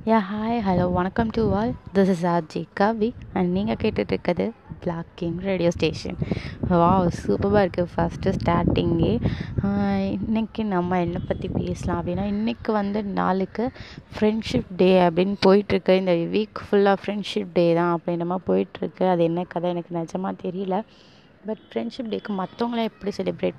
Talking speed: 150 wpm